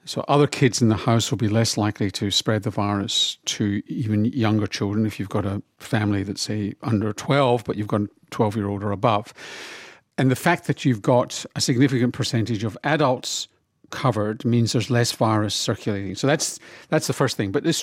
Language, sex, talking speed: English, male, 200 wpm